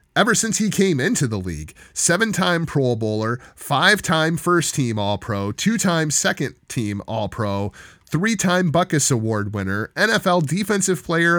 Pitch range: 115-155 Hz